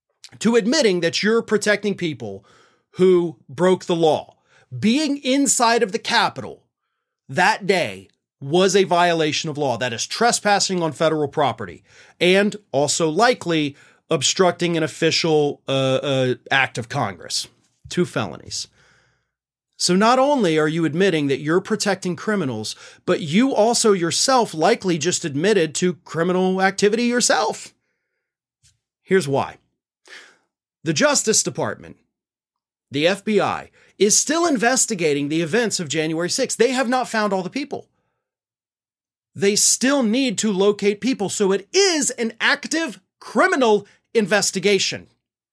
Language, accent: English, American